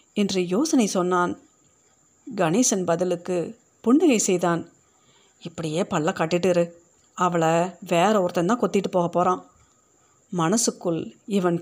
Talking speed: 95 wpm